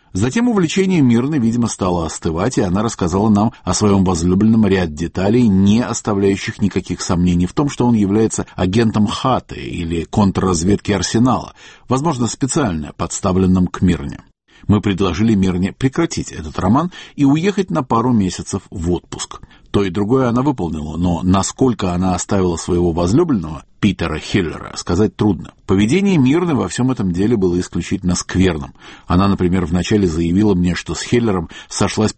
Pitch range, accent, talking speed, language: 90-115 Hz, native, 150 wpm, Russian